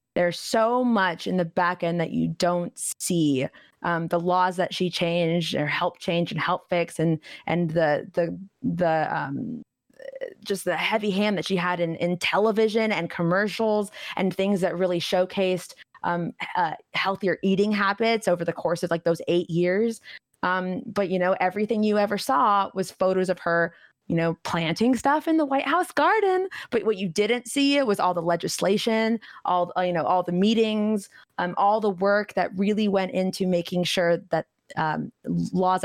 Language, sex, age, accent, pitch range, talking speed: English, female, 20-39, American, 175-215 Hz, 180 wpm